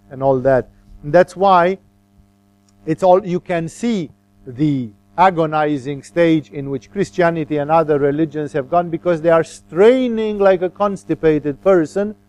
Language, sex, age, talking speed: English, male, 50-69, 145 wpm